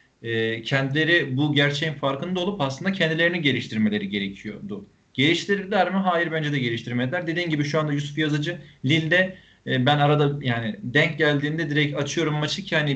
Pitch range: 140-170 Hz